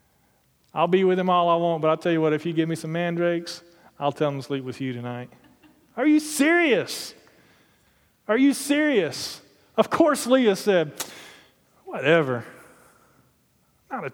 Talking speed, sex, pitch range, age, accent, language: 165 wpm, male, 155-205 Hz, 30-49, American, English